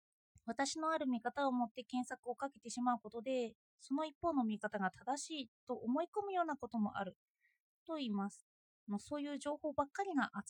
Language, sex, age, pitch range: Japanese, female, 20-39, 225-320 Hz